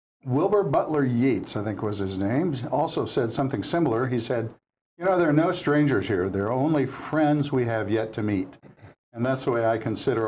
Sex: male